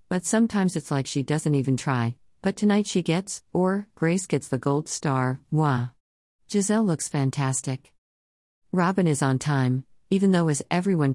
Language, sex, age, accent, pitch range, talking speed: English, female, 50-69, American, 130-170 Hz, 160 wpm